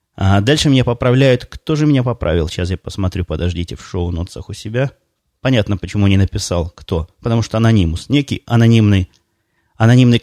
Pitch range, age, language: 100-120 Hz, 20-39, Russian